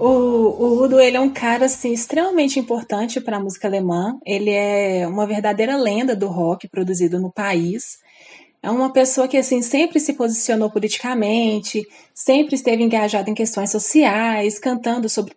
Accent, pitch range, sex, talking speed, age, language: Brazilian, 205-265 Hz, female, 160 wpm, 20-39, Portuguese